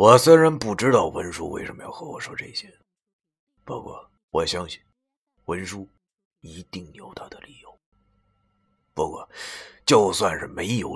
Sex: male